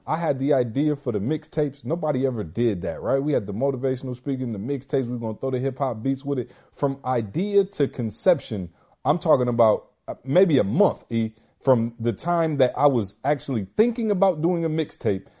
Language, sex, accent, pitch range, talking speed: English, male, American, 120-175 Hz, 200 wpm